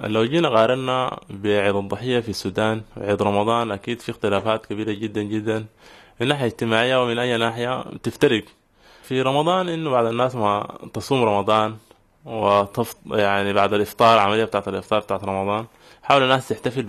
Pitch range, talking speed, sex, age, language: 100-120 Hz, 145 wpm, male, 20-39, Arabic